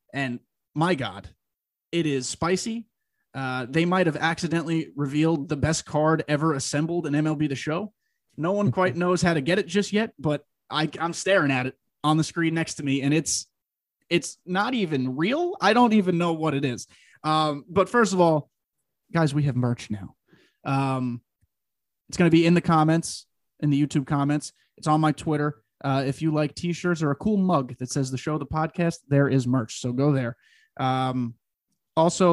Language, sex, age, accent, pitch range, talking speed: English, male, 20-39, American, 135-170 Hz, 195 wpm